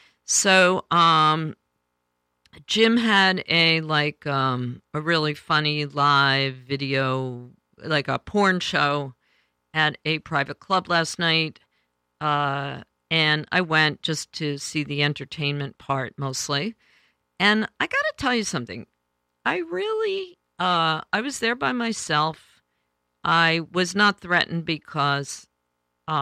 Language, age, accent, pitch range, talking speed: English, 50-69, American, 135-185 Hz, 125 wpm